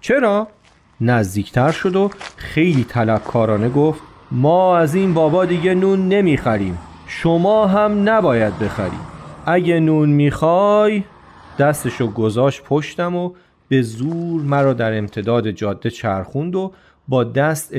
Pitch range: 120-190 Hz